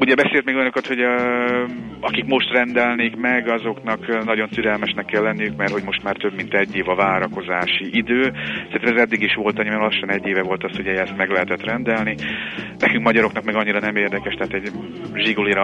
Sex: male